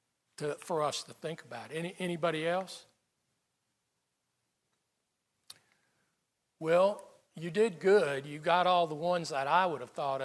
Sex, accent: male, American